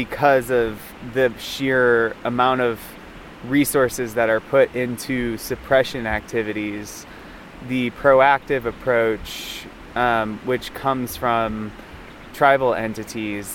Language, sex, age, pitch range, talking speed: English, male, 20-39, 110-125 Hz, 95 wpm